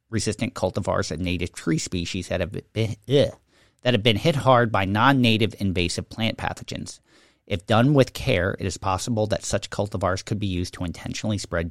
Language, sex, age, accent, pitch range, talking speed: English, male, 50-69, American, 90-120 Hz, 185 wpm